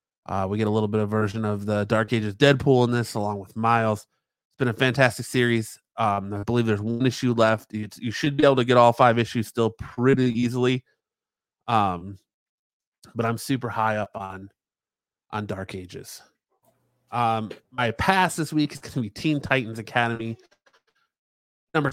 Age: 30-49